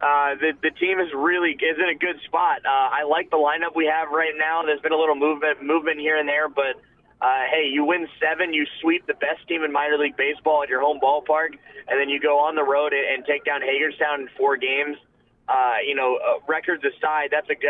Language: English